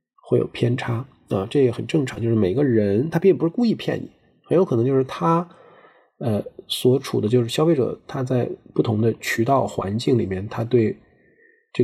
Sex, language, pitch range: male, Chinese, 110-145 Hz